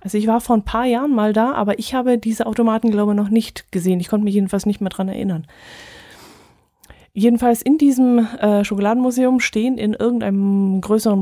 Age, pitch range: 20-39, 185-225 Hz